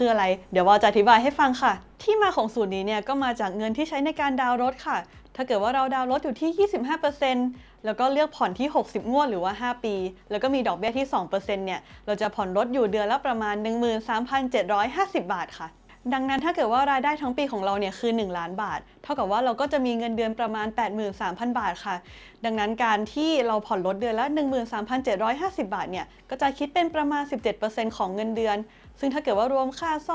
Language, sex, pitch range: Thai, female, 215-285 Hz